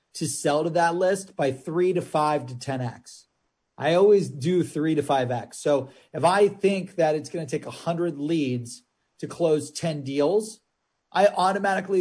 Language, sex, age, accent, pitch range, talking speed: English, male, 30-49, American, 140-175 Hz, 185 wpm